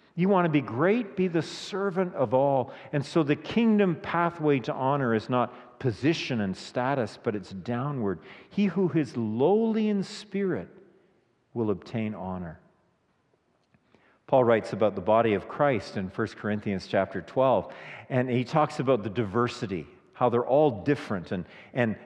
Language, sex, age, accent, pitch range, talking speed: English, male, 50-69, American, 110-165 Hz, 160 wpm